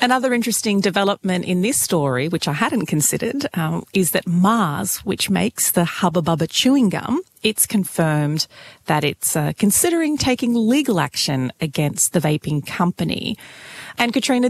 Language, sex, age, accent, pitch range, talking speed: English, female, 30-49, Australian, 160-220 Hz, 145 wpm